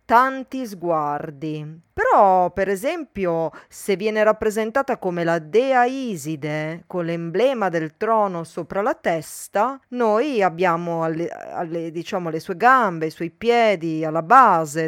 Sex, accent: female, native